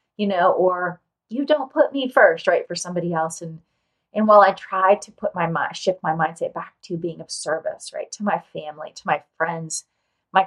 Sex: female